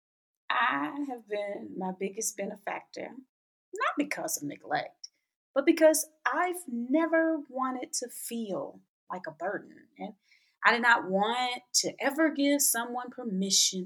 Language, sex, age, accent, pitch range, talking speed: English, female, 30-49, American, 195-290 Hz, 130 wpm